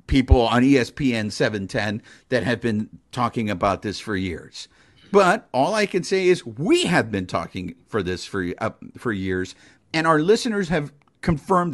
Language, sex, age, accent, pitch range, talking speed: English, male, 50-69, American, 120-165 Hz, 170 wpm